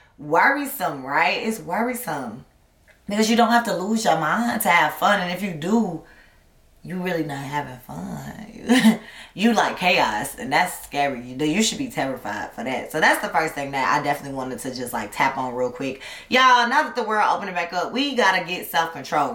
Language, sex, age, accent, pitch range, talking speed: English, female, 20-39, American, 155-220 Hz, 200 wpm